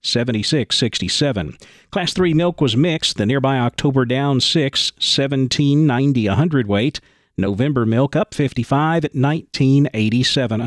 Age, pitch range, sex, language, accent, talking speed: 40-59, 125-155 Hz, male, English, American, 100 wpm